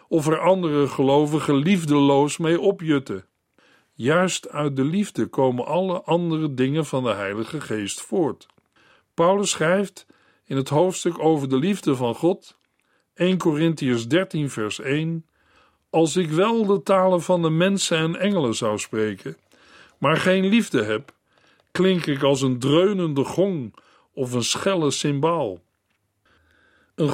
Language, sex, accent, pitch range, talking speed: Dutch, male, Dutch, 140-180 Hz, 135 wpm